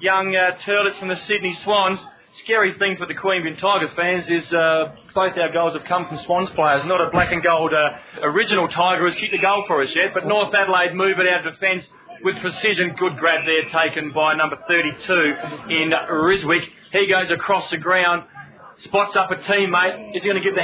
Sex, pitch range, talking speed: male, 170-195 Hz, 210 wpm